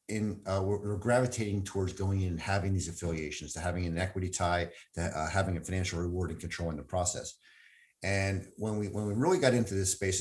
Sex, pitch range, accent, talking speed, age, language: male, 90-110 Hz, American, 215 wpm, 50-69, English